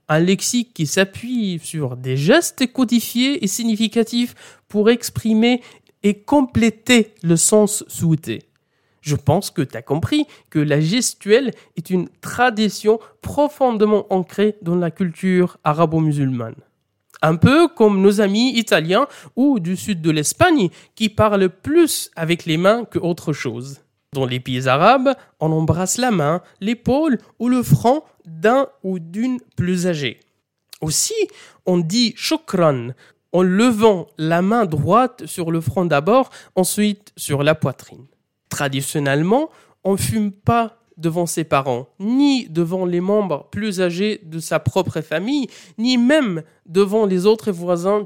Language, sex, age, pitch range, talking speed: French, male, 20-39, 160-230 Hz, 140 wpm